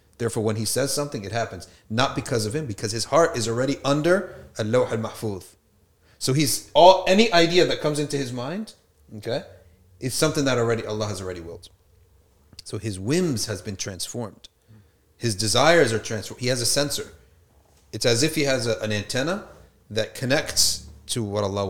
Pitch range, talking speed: 95-135 Hz, 175 wpm